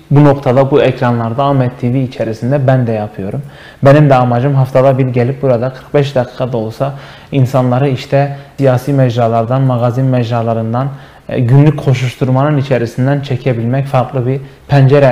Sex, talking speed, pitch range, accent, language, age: male, 135 wpm, 130-165 Hz, native, Turkish, 30-49